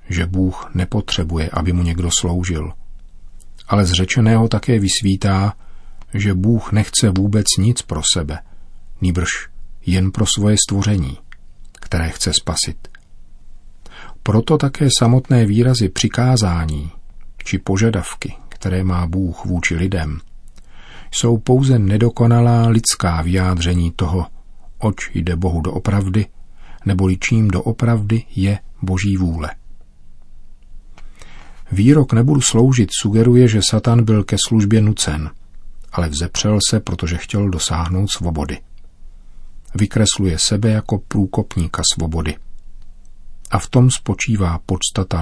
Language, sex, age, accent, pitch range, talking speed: Czech, male, 40-59, native, 85-110 Hz, 110 wpm